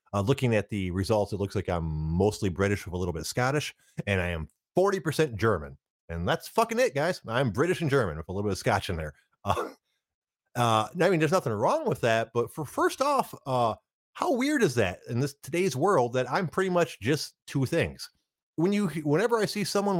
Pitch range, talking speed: 100-155 Hz, 220 wpm